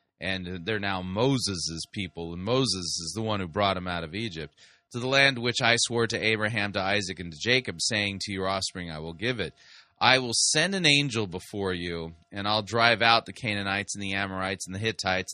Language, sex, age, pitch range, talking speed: English, male, 30-49, 95-125 Hz, 220 wpm